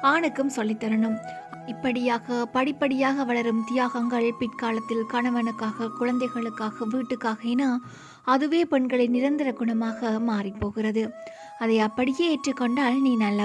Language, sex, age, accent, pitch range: Tamil, female, 20-39, native, 225-265 Hz